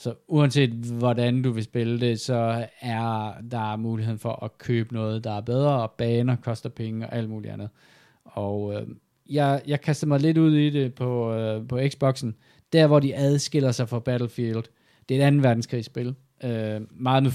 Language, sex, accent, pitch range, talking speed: Danish, male, native, 110-130 Hz, 190 wpm